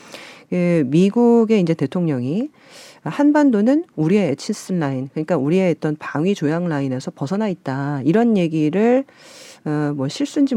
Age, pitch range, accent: 40-59, 150-220 Hz, native